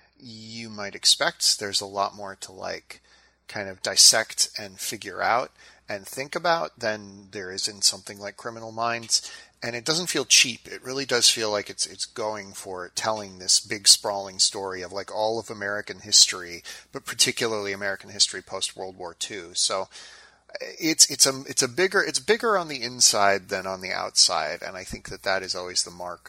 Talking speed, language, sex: 190 wpm, English, male